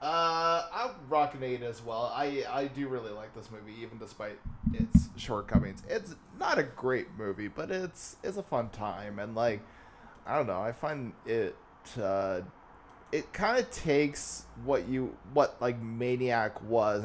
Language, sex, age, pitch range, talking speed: English, male, 20-39, 105-135 Hz, 160 wpm